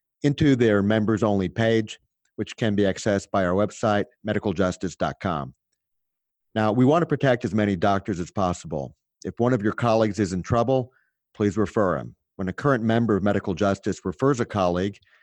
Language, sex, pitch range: English, male, 100-115 Hz